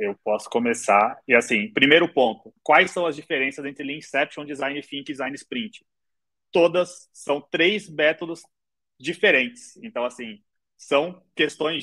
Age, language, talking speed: 20-39, Portuguese, 135 wpm